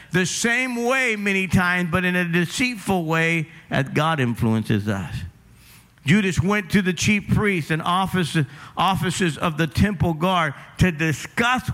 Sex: male